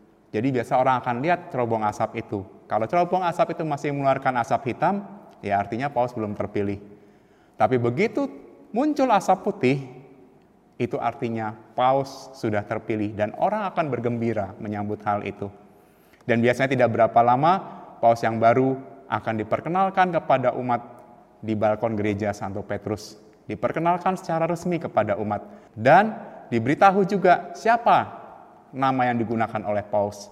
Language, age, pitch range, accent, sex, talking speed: Indonesian, 30-49, 105-140 Hz, native, male, 135 wpm